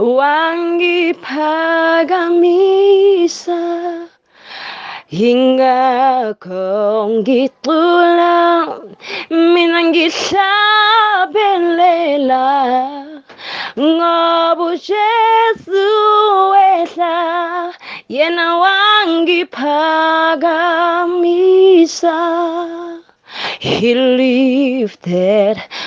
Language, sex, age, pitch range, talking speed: English, female, 20-39, 255-345 Hz, 35 wpm